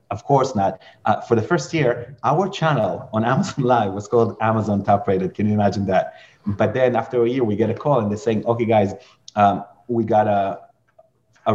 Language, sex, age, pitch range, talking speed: English, male, 30-49, 105-135 Hz, 215 wpm